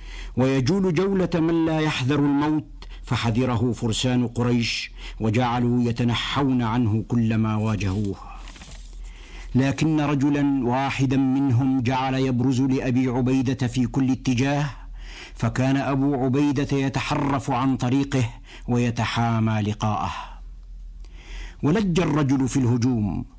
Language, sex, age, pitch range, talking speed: Arabic, male, 60-79, 115-140 Hz, 95 wpm